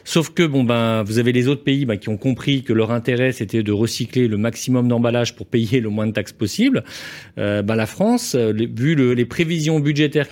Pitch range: 115-150 Hz